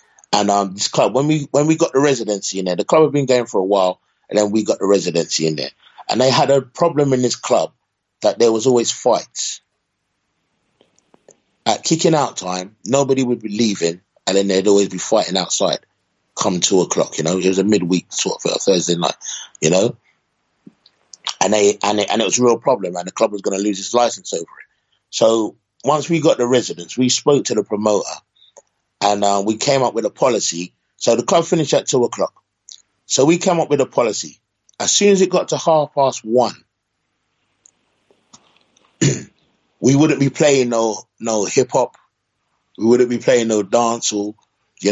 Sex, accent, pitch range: male, British, 100-135 Hz